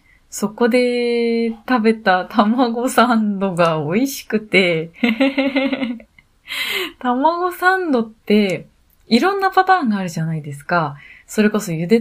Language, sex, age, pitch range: Japanese, female, 20-39, 150-245 Hz